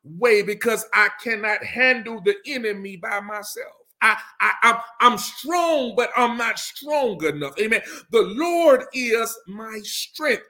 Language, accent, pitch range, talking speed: English, American, 210-305 Hz, 145 wpm